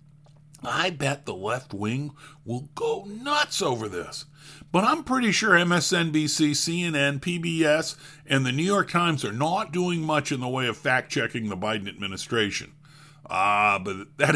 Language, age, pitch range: English, 50-69, 140-185 Hz